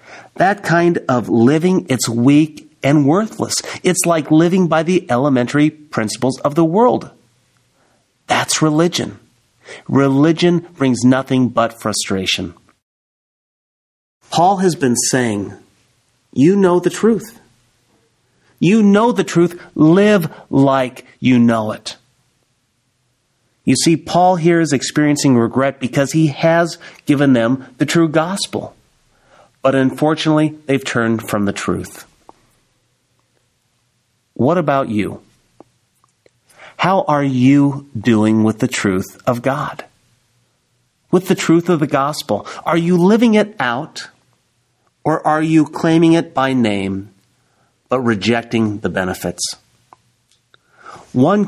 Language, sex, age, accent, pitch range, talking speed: English, male, 40-59, American, 120-165 Hz, 115 wpm